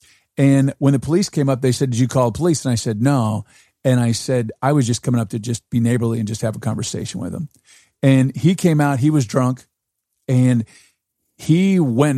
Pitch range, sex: 115-145 Hz, male